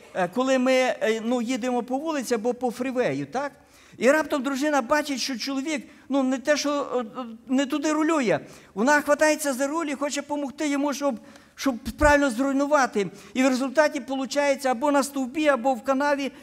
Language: Ukrainian